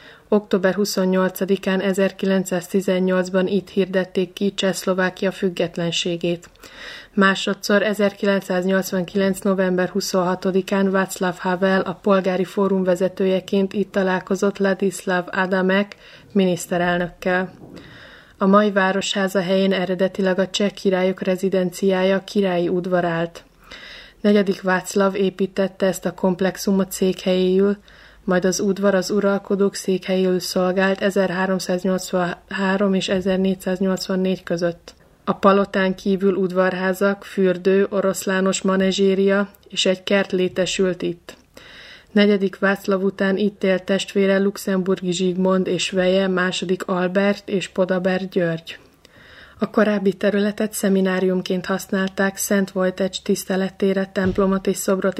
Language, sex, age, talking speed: Czech, female, 20-39, 100 wpm